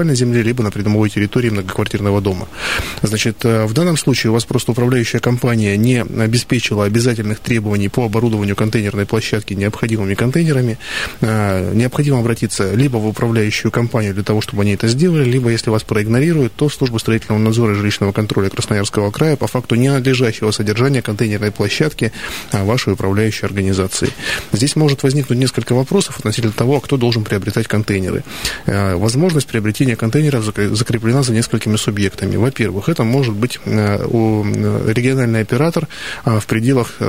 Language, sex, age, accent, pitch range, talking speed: Russian, male, 20-39, native, 105-125 Hz, 140 wpm